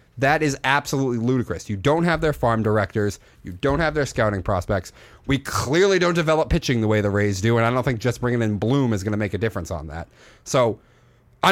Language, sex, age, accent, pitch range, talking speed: English, male, 30-49, American, 105-140 Hz, 230 wpm